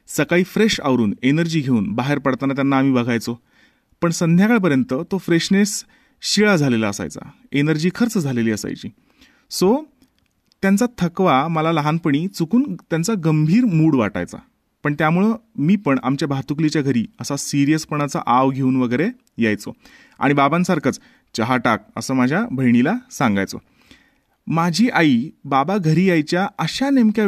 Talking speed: 130 wpm